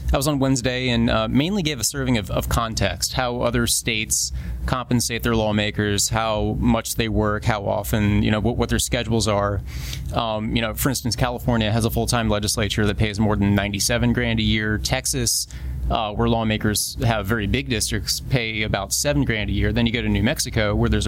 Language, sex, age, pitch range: English, male, 30-49, 105-125 Hz